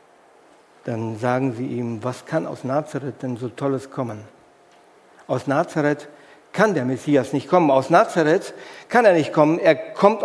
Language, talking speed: German, 160 wpm